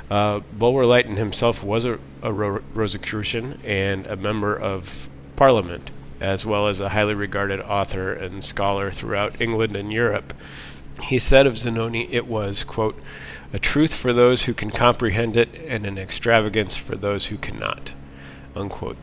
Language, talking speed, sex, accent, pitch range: English, 155 wpm, male, American, 95-110 Hz